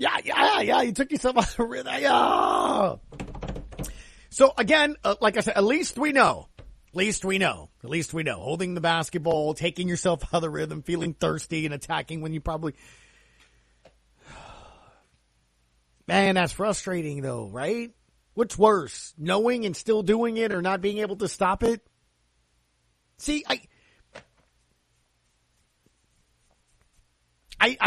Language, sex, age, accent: English, male, 40-59, American